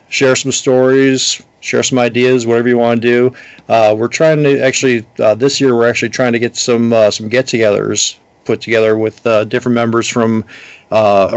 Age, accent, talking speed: 50-69, American, 190 wpm